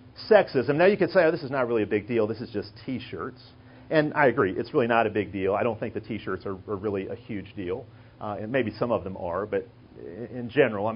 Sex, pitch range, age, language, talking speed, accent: male, 120-165 Hz, 40-59, English, 265 wpm, American